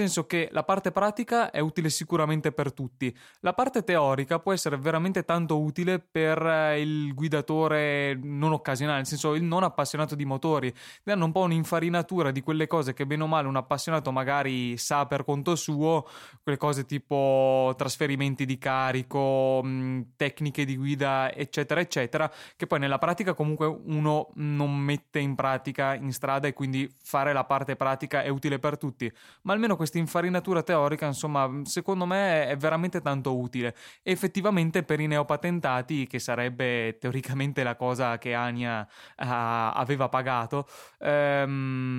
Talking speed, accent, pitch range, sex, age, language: 155 wpm, native, 135-160 Hz, male, 20-39, Italian